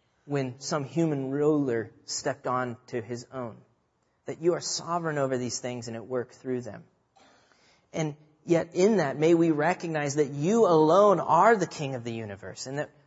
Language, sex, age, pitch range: English, male, 30-49, 120-155 Hz